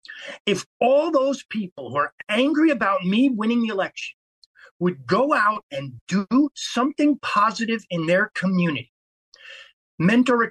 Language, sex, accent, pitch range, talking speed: English, male, American, 220-280 Hz, 130 wpm